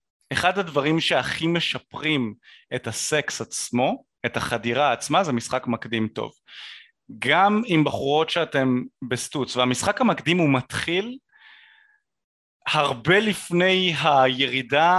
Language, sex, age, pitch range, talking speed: Hebrew, male, 30-49, 130-195 Hz, 105 wpm